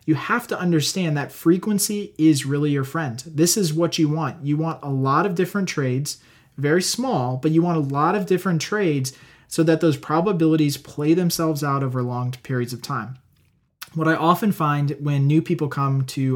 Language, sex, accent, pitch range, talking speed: English, male, American, 135-165 Hz, 195 wpm